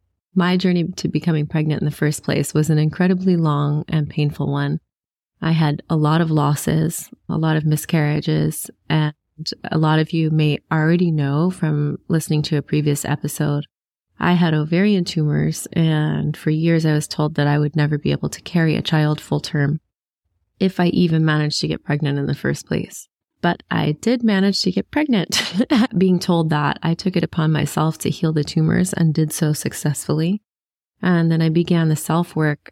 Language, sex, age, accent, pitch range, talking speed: English, female, 20-39, American, 145-170 Hz, 185 wpm